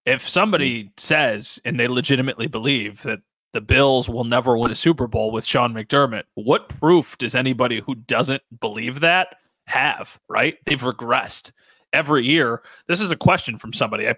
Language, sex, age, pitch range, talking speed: English, male, 30-49, 125-160 Hz, 170 wpm